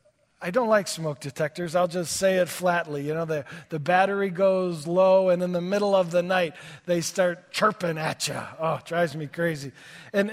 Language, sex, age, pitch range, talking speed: English, male, 40-59, 180-255 Hz, 205 wpm